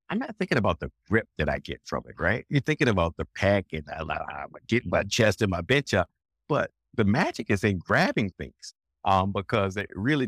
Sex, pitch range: male, 80-100 Hz